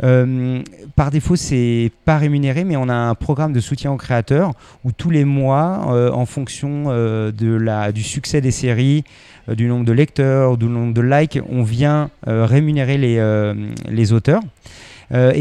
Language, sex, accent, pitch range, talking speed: French, male, French, 115-145 Hz, 185 wpm